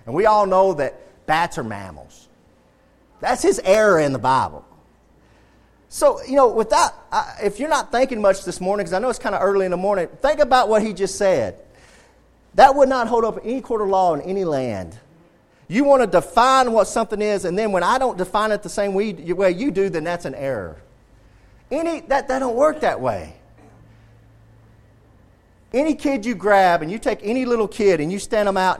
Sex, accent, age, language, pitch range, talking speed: male, American, 40-59, English, 140-225 Hz, 205 wpm